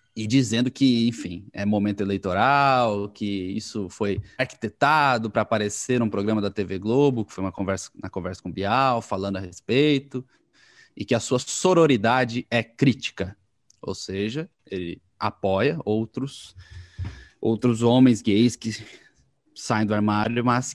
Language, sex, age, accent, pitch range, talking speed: Portuguese, male, 20-39, Brazilian, 110-150 Hz, 145 wpm